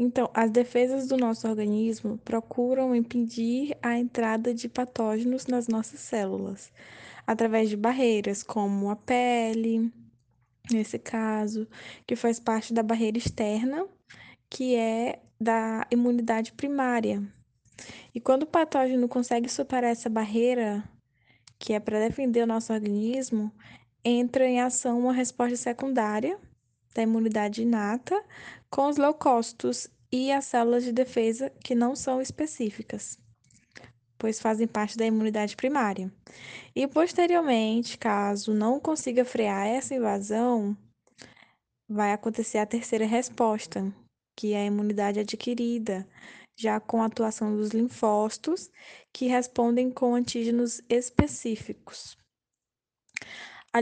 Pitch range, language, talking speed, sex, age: 215-250 Hz, Portuguese, 120 wpm, female, 10-29